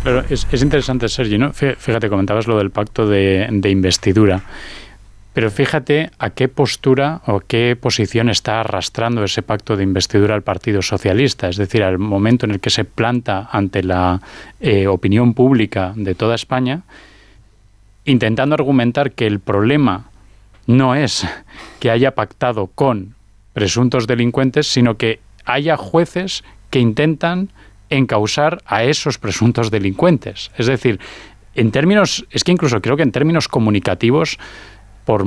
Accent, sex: Spanish, male